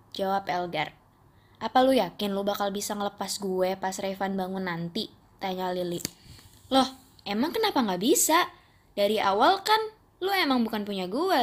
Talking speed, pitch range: 150 wpm, 195-275 Hz